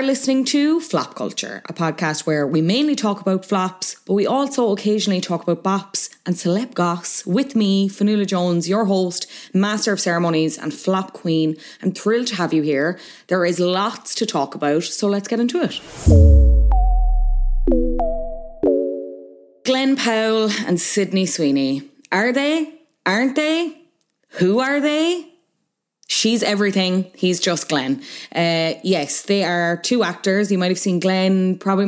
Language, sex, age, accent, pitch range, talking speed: English, female, 20-39, Irish, 170-220 Hz, 150 wpm